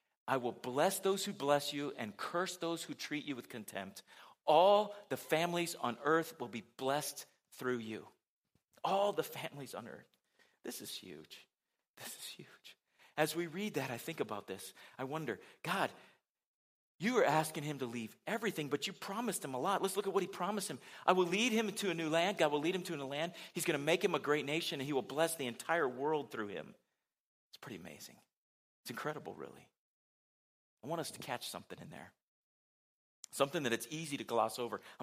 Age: 40-59